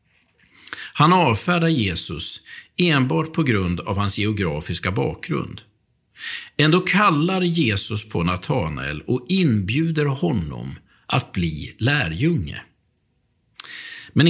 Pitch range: 105-155 Hz